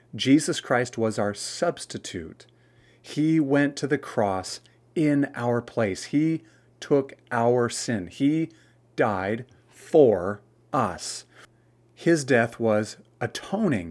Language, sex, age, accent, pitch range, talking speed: English, male, 30-49, American, 115-150 Hz, 110 wpm